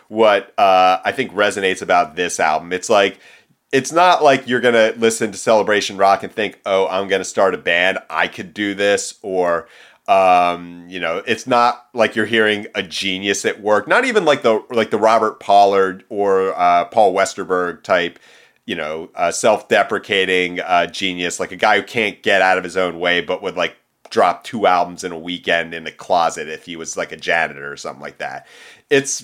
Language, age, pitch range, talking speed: English, 30-49, 90-115 Hz, 200 wpm